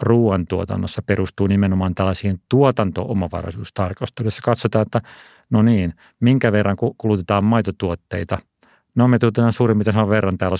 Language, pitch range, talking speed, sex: Finnish, 95-110 Hz, 110 wpm, male